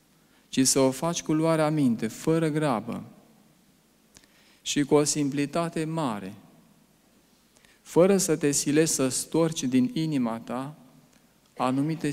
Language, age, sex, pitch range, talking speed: Romanian, 40-59, male, 130-180 Hz, 120 wpm